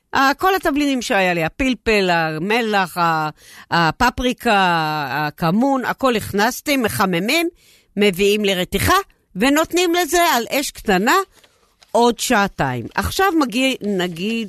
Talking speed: 95 wpm